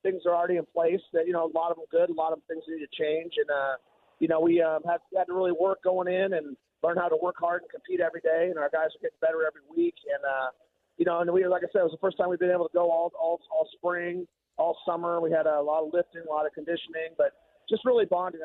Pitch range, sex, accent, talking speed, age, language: 150-175 Hz, male, American, 295 wpm, 30-49, English